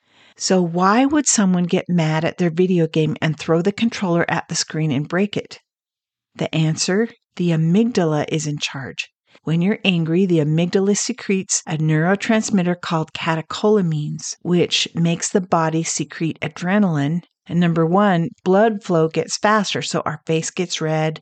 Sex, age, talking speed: female, 50-69, 155 wpm